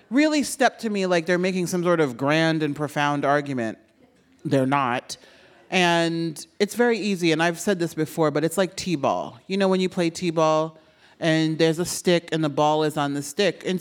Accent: American